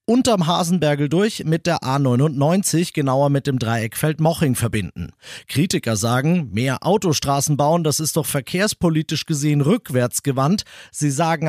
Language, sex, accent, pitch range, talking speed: German, male, German, 130-175 Hz, 130 wpm